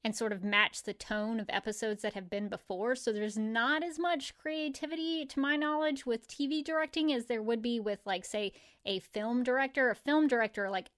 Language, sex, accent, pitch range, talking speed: English, female, American, 210-255 Hz, 210 wpm